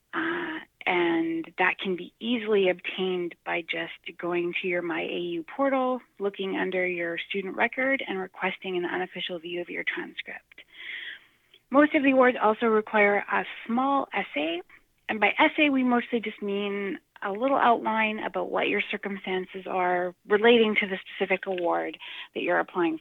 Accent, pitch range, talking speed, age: American, 185-240 Hz, 155 wpm, 30-49